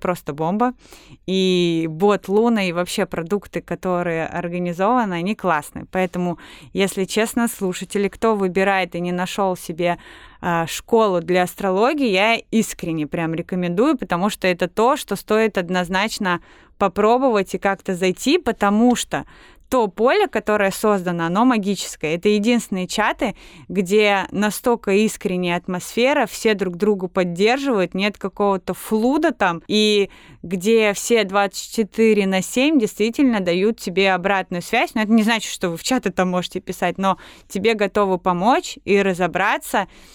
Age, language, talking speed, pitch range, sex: 20-39, Russian, 135 wpm, 180-220 Hz, female